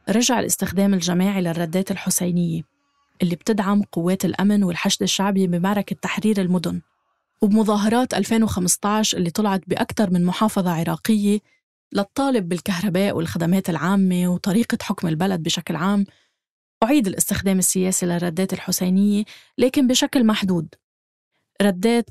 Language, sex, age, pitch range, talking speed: Arabic, female, 20-39, 185-225 Hz, 110 wpm